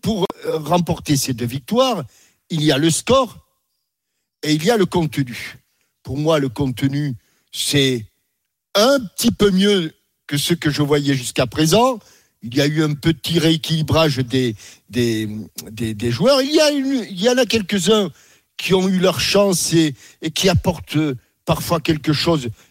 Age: 60-79